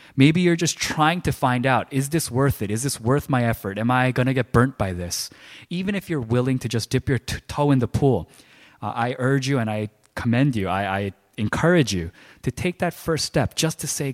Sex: male